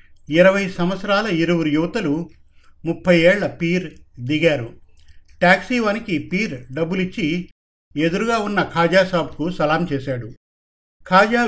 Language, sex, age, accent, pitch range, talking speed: Telugu, male, 50-69, native, 140-190 Hz, 90 wpm